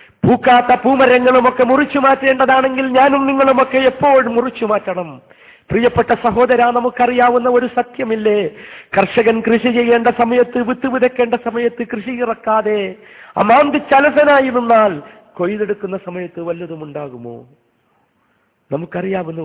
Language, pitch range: Malayalam, 155-235 Hz